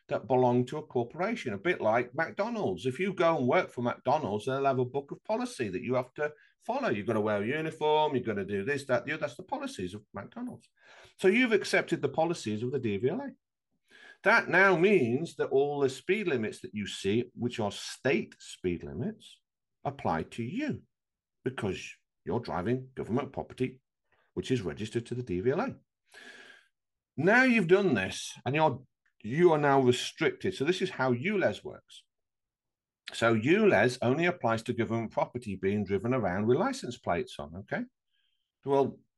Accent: British